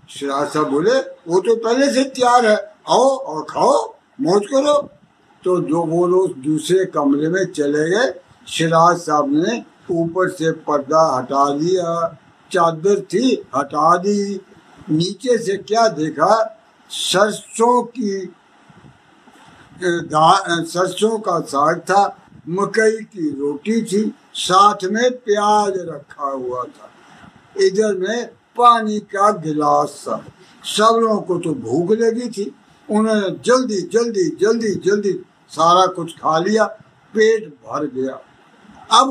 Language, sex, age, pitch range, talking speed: Punjabi, male, 60-79, 165-225 Hz, 120 wpm